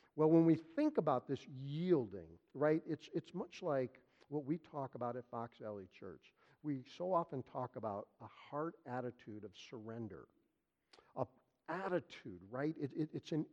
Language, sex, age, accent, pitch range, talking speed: English, male, 50-69, American, 130-185 Hz, 165 wpm